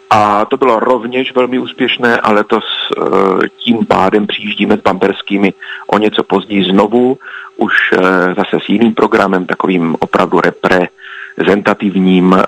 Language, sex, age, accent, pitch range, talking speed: Czech, male, 40-59, native, 95-110 Hz, 135 wpm